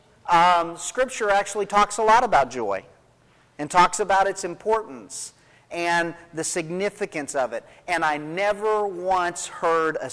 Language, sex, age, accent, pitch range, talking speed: English, male, 40-59, American, 150-205 Hz, 140 wpm